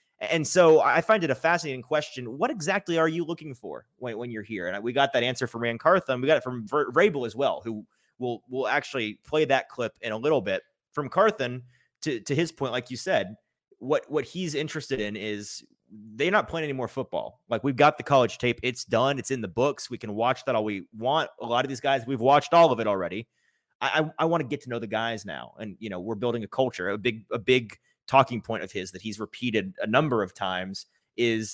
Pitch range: 110-145 Hz